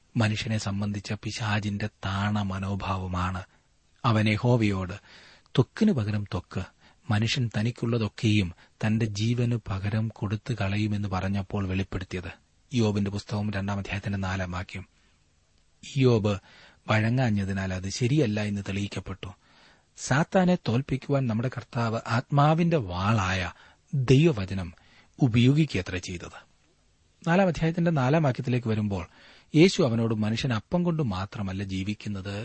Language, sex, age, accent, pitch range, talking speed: Malayalam, male, 30-49, native, 95-125 Hz, 45 wpm